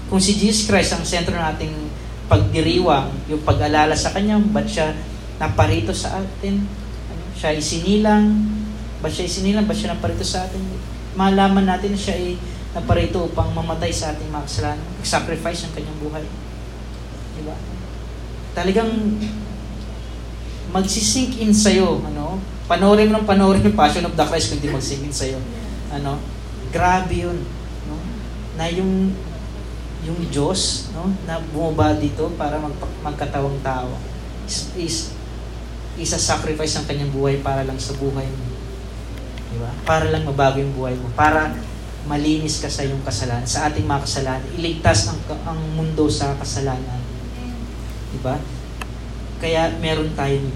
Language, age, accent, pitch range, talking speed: Filipino, 20-39, native, 110-165 Hz, 140 wpm